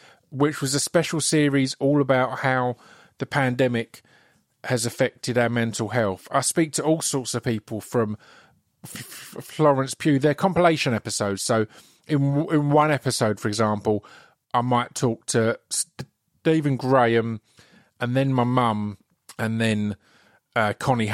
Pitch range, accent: 110-140 Hz, British